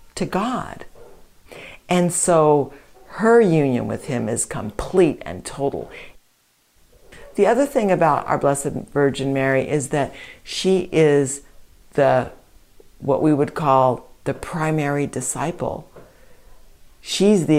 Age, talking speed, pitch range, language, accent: 60-79, 115 wpm, 135-170 Hz, English, American